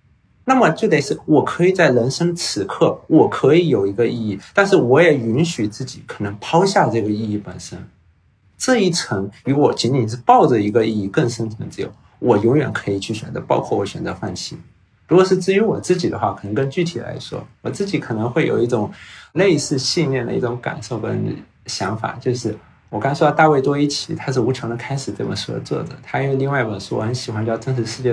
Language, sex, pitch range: Chinese, male, 115-160 Hz